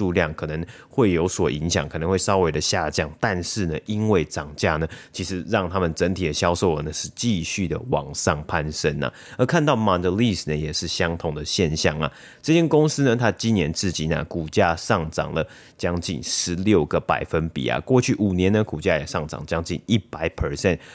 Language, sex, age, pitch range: Chinese, male, 30-49, 80-105 Hz